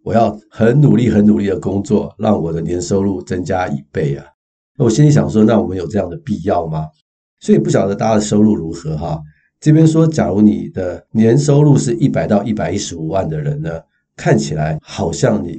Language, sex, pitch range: Chinese, male, 80-110 Hz